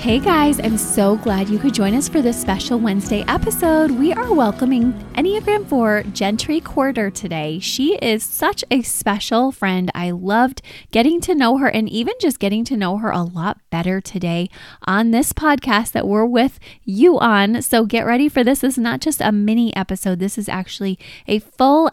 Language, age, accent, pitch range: English, 20-39, American, 180-235 Hz